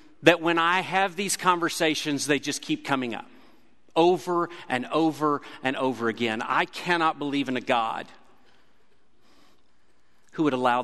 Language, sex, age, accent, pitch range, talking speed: English, male, 40-59, American, 125-170 Hz, 145 wpm